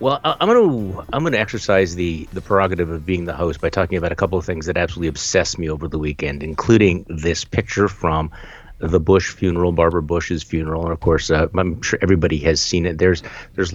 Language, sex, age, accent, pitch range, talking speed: English, male, 50-69, American, 85-120 Hz, 215 wpm